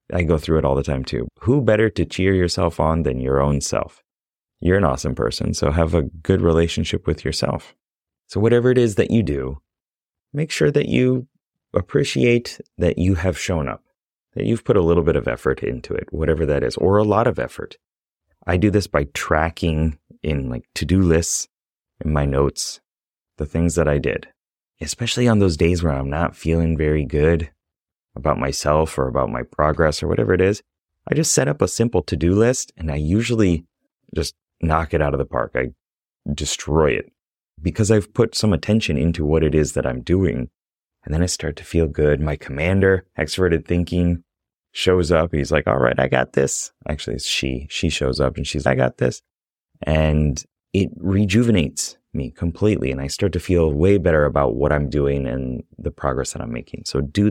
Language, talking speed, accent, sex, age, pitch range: English, 200 wpm, American, male, 30-49, 75-95 Hz